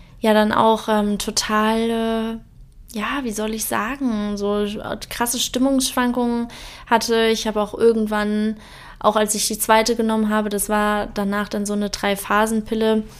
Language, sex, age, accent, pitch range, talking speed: German, female, 20-39, German, 210-245 Hz, 150 wpm